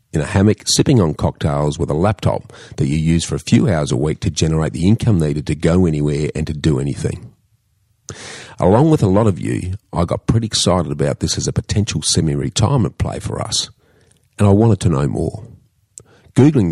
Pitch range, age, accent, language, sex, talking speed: 80-115 Hz, 40-59, Australian, English, male, 200 wpm